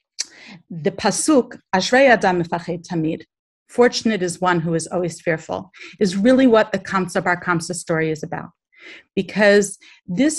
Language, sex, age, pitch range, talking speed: English, female, 40-59, 175-220 Hz, 145 wpm